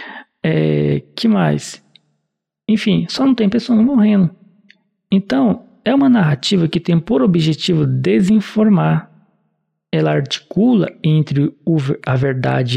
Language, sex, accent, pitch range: Portuguese, male, Brazilian, 150-215 Hz